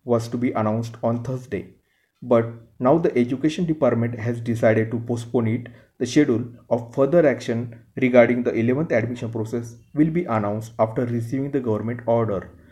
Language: Marathi